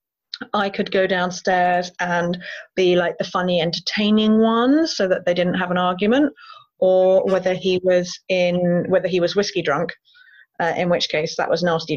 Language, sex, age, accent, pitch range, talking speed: English, female, 30-49, British, 170-215 Hz, 175 wpm